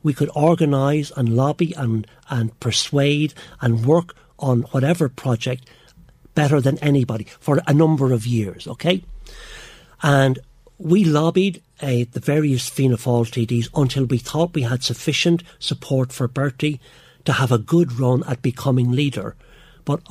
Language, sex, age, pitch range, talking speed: English, male, 60-79, 120-150 Hz, 145 wpm